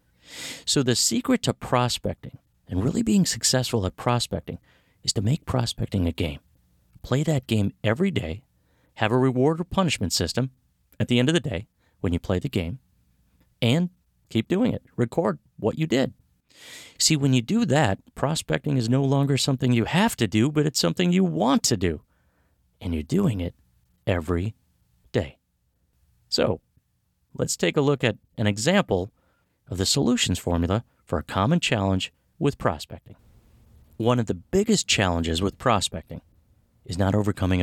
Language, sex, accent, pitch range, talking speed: English, male, American, 90-130 Hz, 165 wpm